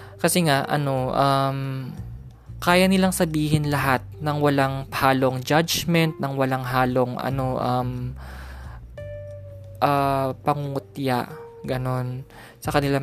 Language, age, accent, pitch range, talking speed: Filipino, 20-39, native, 120-165 Hz, 100 wpm